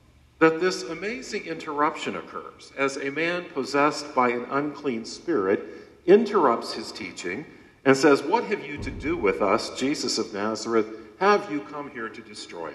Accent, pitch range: American, 105-140 Hz